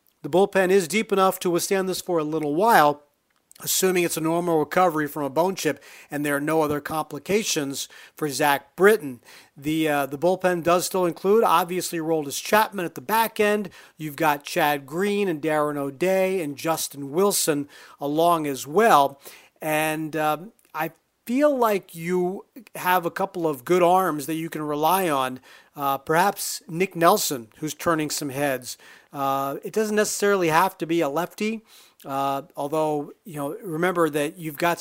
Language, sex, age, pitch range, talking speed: English, male, 40-59, 150-195 Hz, 170 wpm